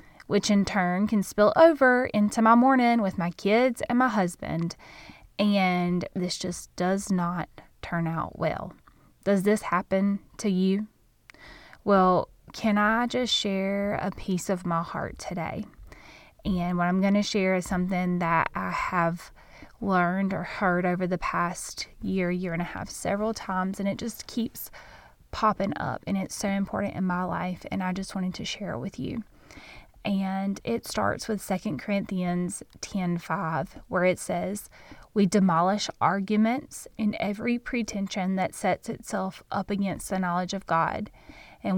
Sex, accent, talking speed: female, American, 160 wpm